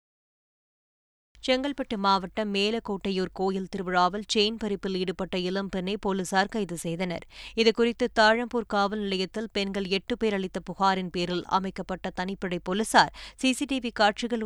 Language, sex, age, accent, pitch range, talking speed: Tamil, female, 20-39, native, 190-225 Hz, 115 wpm